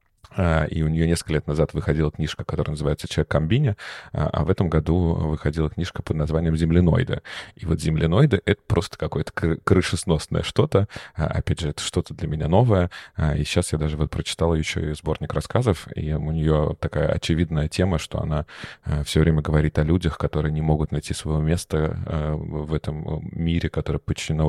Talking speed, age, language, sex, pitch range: 175 wpm, 30-49, Russian, male, 75-90 Hz